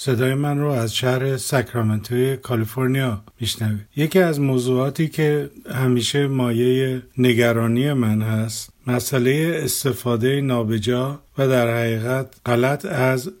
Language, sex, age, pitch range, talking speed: Persian, male, 50-69, 120-135 Hz, 110 wpm